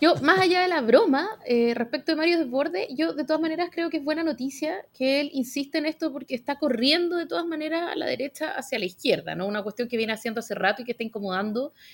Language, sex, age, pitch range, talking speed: Spanish, female, 30-49, 225-295 Hz, 245 wpm